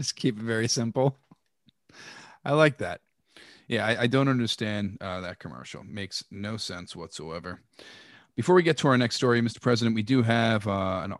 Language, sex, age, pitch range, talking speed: English, male, 30-49, 105-125 Hz, 180 wpm